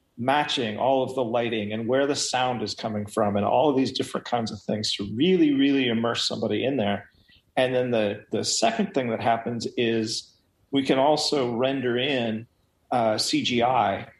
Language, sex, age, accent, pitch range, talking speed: English, male, 40-59, American, 110-130 Hz, 180 wpm